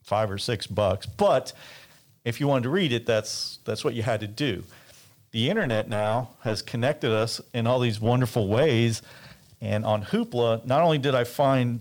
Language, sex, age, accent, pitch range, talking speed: English, male, 40-59, American, 110-135 Hz, 190 wpm